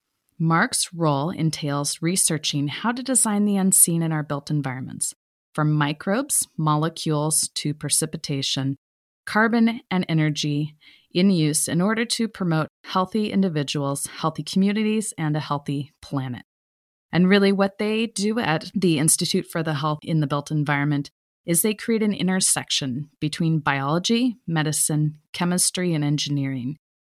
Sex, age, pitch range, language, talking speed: female, 30-49, 150-190 Hz, English, 135 wpm